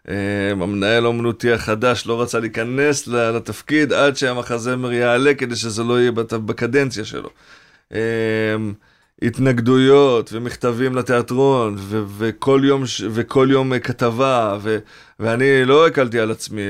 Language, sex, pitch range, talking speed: Hebrew, male, 110-125 Hz, 120 wpm